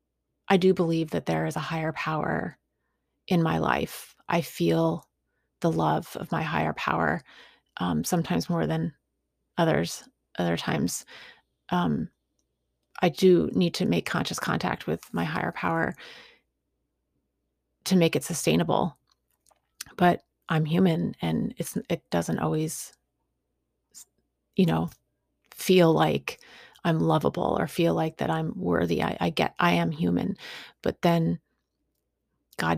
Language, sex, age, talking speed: English, female, 30-49, 130 wpm